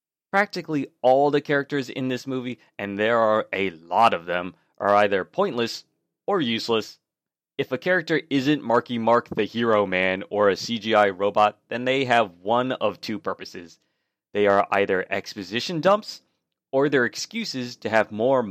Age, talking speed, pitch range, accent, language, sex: 30-49, 160 wpm, 105-135 Hz, American, English, male